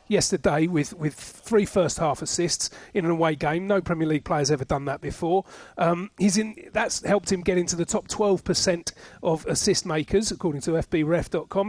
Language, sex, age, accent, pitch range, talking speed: English, male, 40-59, British, 160-205 Hz, 195 wpm